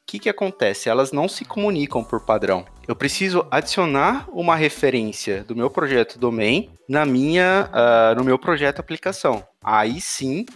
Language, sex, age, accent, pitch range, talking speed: Portuguese, male, 20-39, Brazilian, 115-160 Hz, 160 wpm